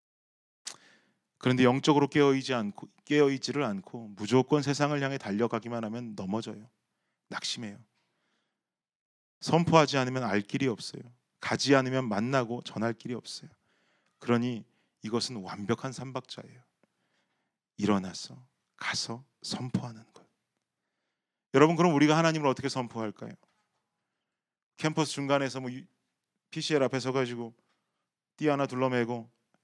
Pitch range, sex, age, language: 115-145 Hz, male, 30-49, Korean